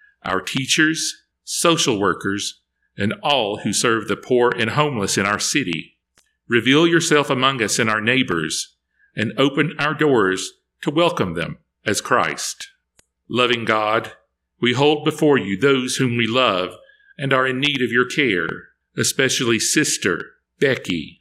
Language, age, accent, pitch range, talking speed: English, 50-69, American, 110-150 Hz, 145 wpm